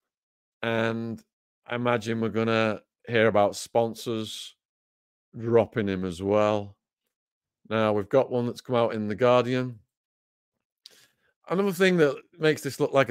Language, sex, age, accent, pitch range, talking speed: English, male, 40-59, British, 105-125 Hz, 135 wpm